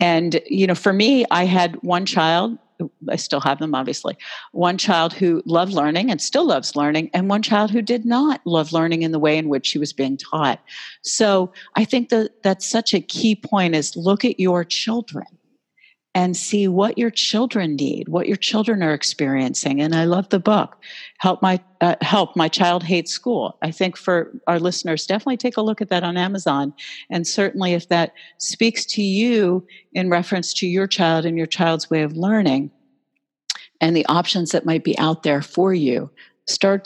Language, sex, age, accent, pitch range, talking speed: English, female, 50-69, American, 165-205 Hz, 195 wpm